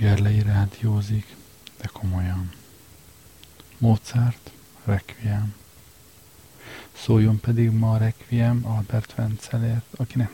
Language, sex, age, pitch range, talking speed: Hungarian, male, 50-69, 105-115 Hz, 75 wpm